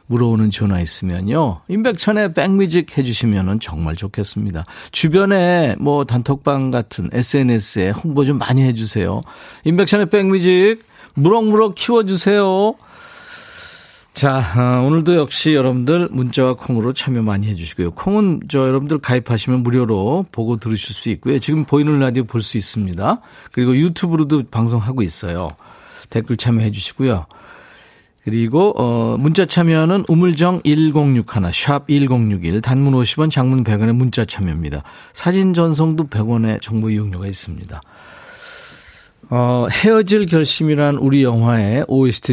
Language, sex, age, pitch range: Korean, male, 40-59, 110-160 Hz